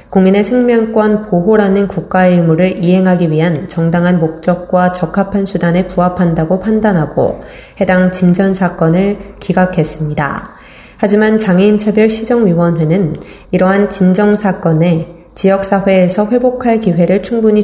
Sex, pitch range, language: female, 170-195 Hz, Korean